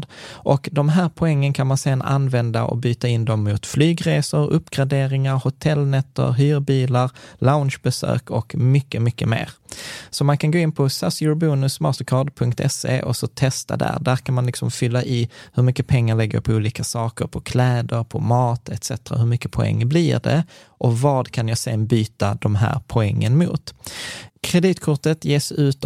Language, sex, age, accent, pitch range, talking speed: Swedish, male, 20-39, native, 120-150 Hz, 160 wpm